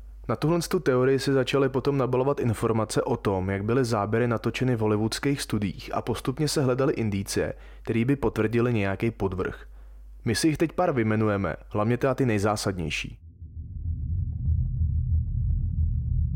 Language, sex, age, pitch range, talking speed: Czech, male, 30-49, 100-130 Hz, 140 wpm